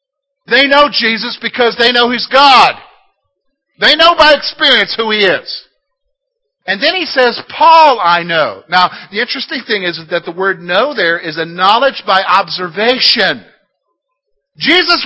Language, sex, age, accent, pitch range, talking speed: English, male, 50-69, American, 170-255 Hz, 150 wpm